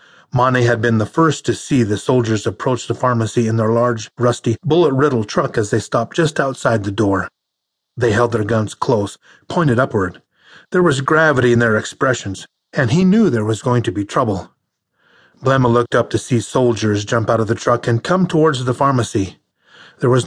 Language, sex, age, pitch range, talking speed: English, male, 30-49, 115-145 Hz, 190 wpm